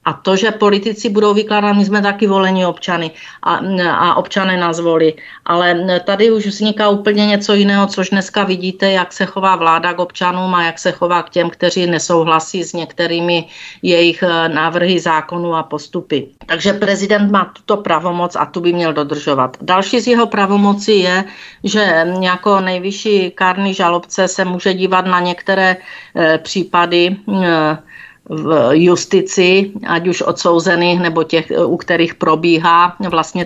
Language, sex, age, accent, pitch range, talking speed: Czech, female, 50-69, native, 170-195 Hz, 155 wpm